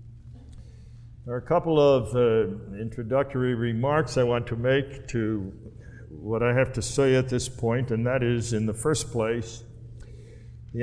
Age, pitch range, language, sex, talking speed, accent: 60-79, 120-170 Hz, English, male, 160 wpm, American